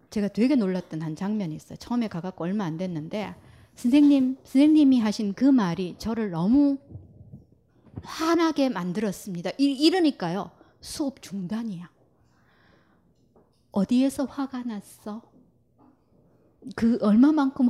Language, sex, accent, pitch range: Korean, female, native, 190-285 Hz